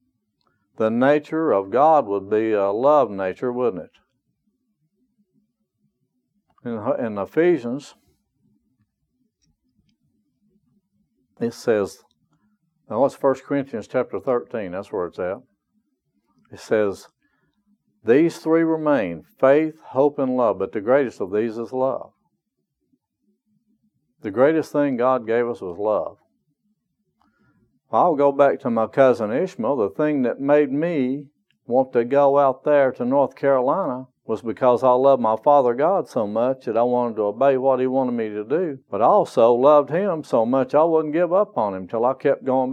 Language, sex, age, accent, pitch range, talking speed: English, male, 60-79, American, 125-165 Hz, 150 wpm